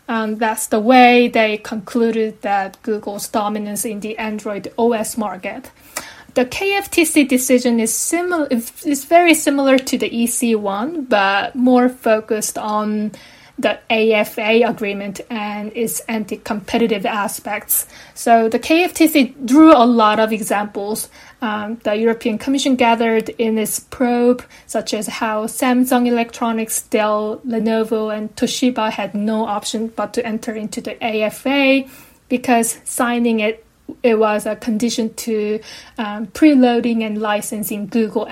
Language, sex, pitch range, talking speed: English, female, 215-250 Hz, 125 wpm